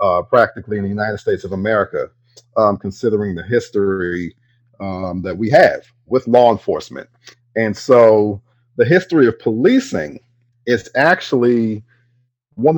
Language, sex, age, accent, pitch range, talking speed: English, male, 40-59, American, 110-130 Hz, 130 wpm